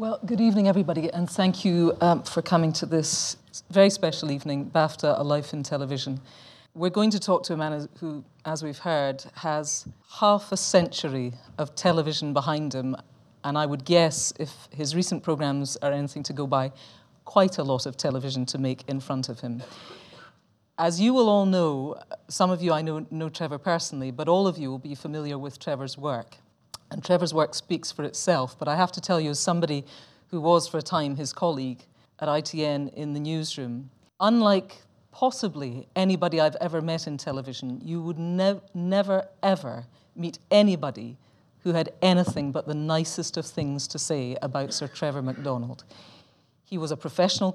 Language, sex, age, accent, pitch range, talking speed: English, female, 40-59, British, 140-175 Hz, 180 wpm